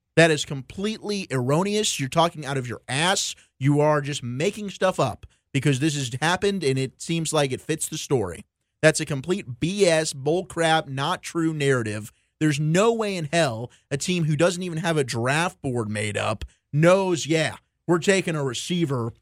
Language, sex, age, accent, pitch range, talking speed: English, male, 30-49, American, 135-185 Hz, 180 wpm